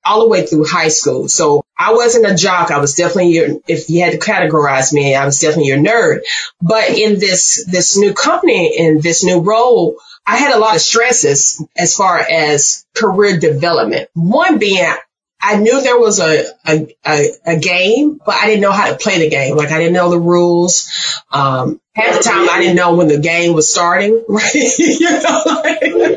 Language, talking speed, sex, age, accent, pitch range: English, 205 wpm, female, 30-49, American, 155-200 Hz